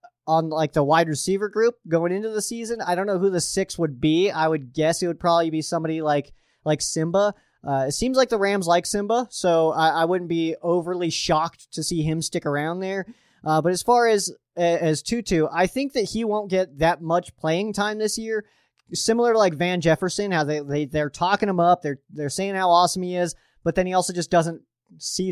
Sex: male